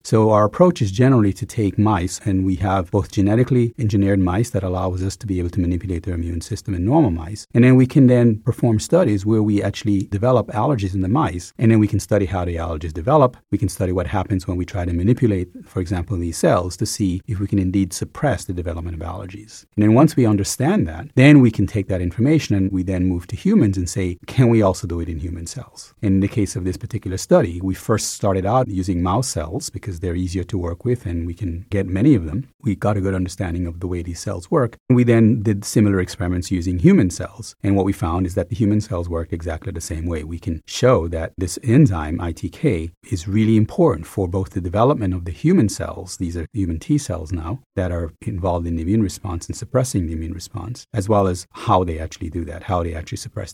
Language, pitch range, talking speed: English, 90-110 Hz, 240 wpm